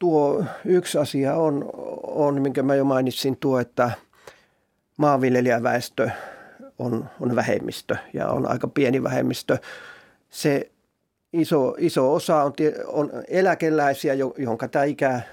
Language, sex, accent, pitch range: Finnish, male, native, 130-150 Hz